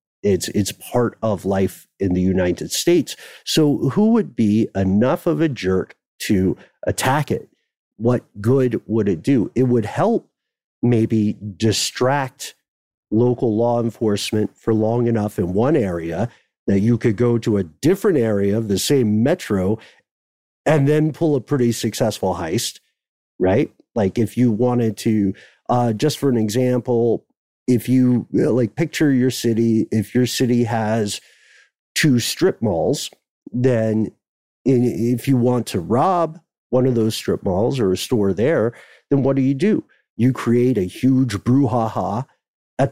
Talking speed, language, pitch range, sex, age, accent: 150 wpm, English, 110-130 Hz, male, 50-69, American